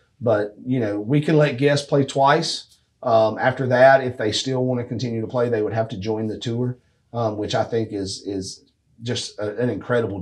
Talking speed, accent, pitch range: 215 wpm, American, 110-140 Hz